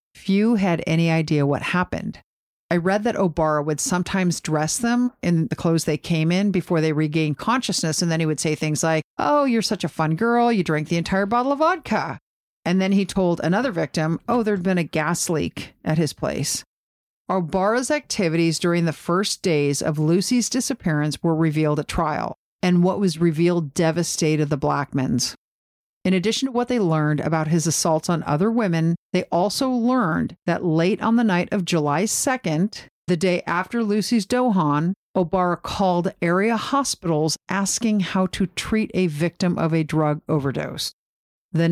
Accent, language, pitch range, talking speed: American, English, 160-210 Hz, 175 wpm